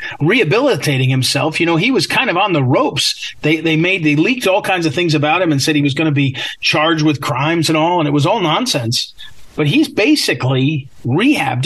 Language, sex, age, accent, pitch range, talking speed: English, male, 40-59, American, 140-180 Hz, 220 wpm